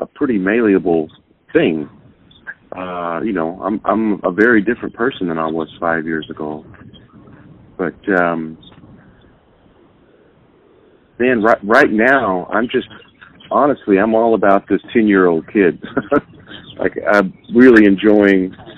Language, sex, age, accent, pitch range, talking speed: English, male, 40-59, American, 90-115 Hz, 130 wpm